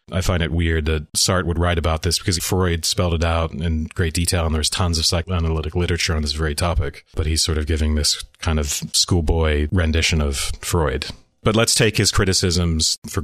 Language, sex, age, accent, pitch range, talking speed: English, male, 30-49, American, 80-95 Hz, 210 wpm